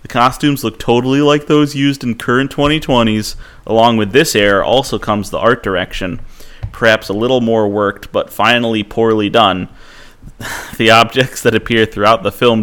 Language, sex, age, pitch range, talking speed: English, male, 30-49, 105-130 Hz, 165 wpm